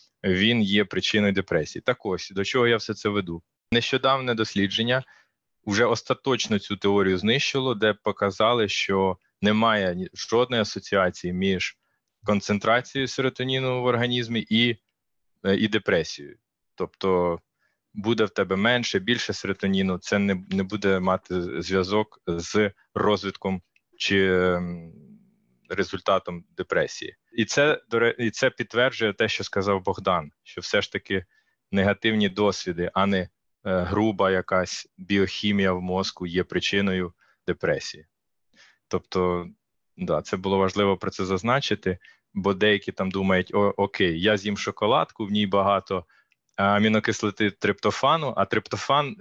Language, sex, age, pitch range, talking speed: Ukrainian, male, 20-39, 95-110 Hz, 125 wpm